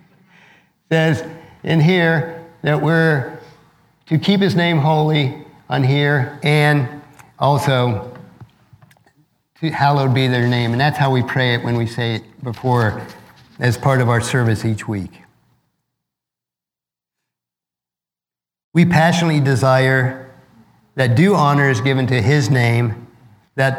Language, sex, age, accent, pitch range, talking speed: English, male, 50-69, American, 130-170 Hz, 125 wpm